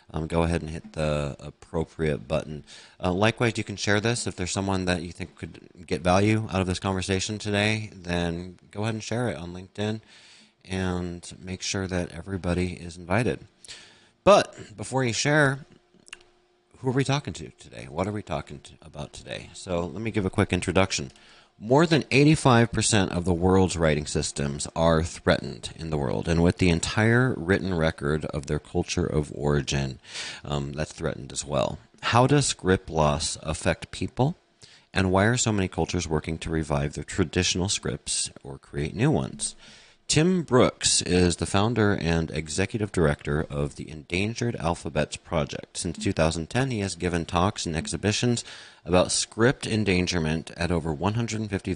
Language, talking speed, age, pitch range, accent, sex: English, 165 wpm, 30-49, 80-110 Hz, American, male